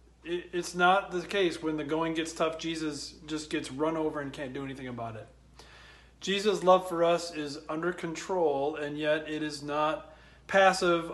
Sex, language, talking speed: male, English, 180 wpm